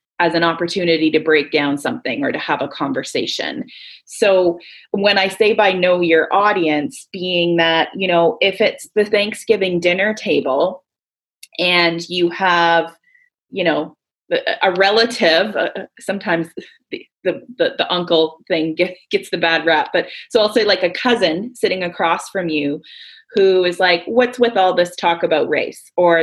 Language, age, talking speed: English, 20-39, 160 wpm